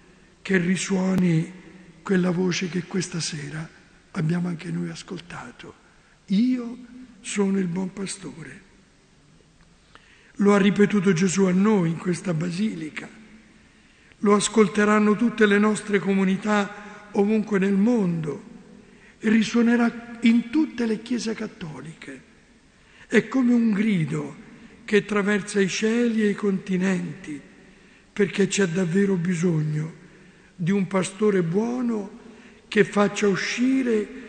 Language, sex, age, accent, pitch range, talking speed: Italian, male, 60-79, native, 185-220 Hz, 110 wpm